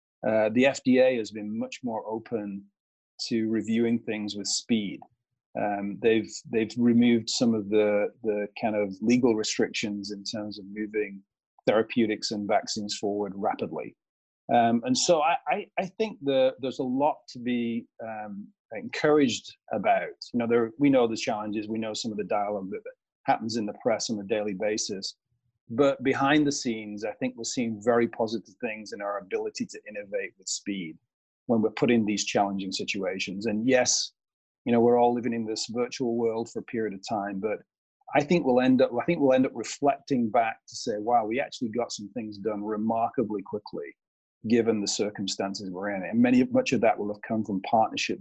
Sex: male